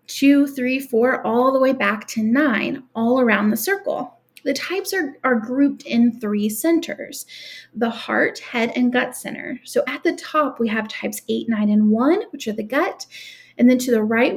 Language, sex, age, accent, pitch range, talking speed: English, female, 30-49, American, 230-295 Hz, 195 wpm